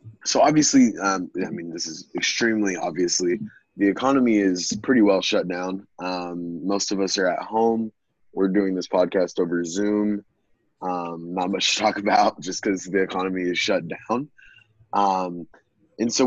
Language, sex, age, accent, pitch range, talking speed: English, male, 20-39, American, 90-110 Hz, 165 wpm